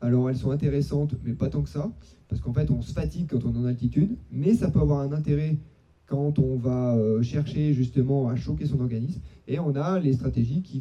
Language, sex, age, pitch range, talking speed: French, male, 30-49, 130-160 Hz, 230 wpm